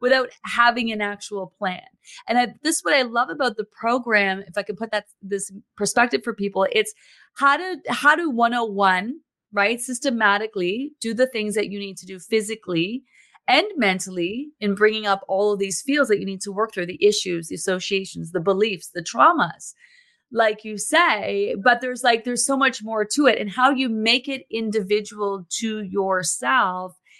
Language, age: English, 30-49